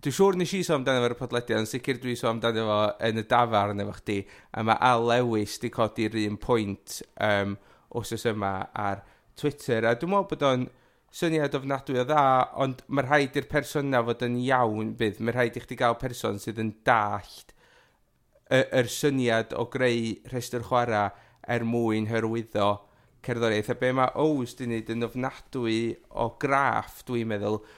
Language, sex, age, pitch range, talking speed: English, male, 30-49, 110-130 Hz, 175 wpm